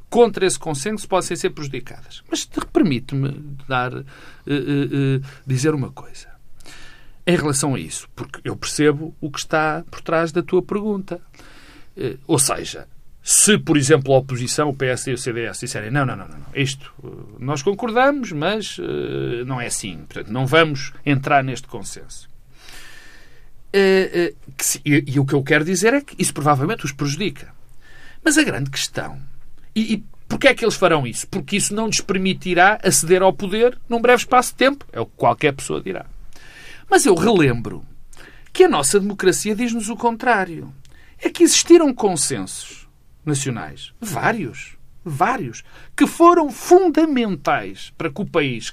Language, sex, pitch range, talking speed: Portuguese, male, 135-205 Hz, 165 wpm